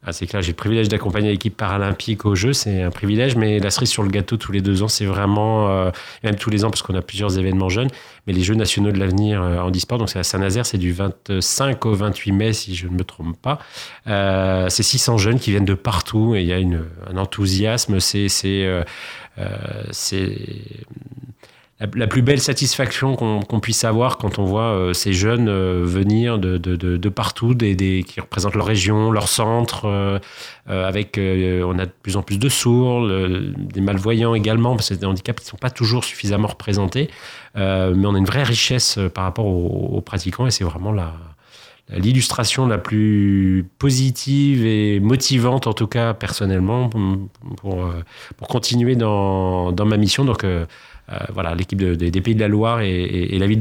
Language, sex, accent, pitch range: French, male, French, 95-115 Hz